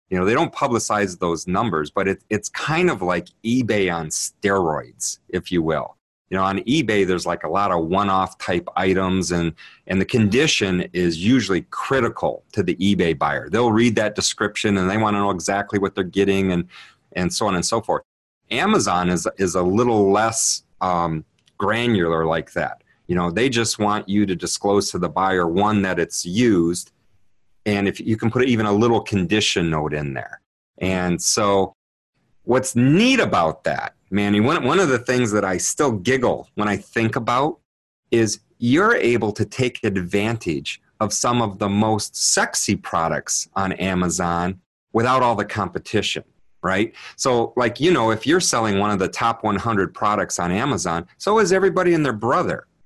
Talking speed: 180 wpm